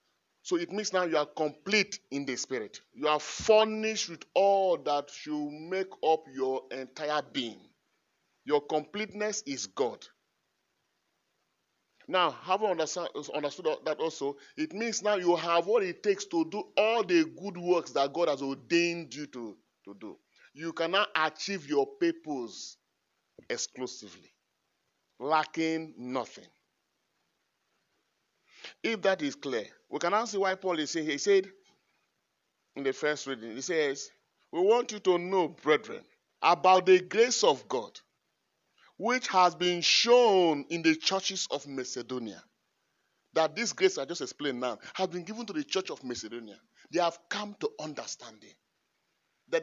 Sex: male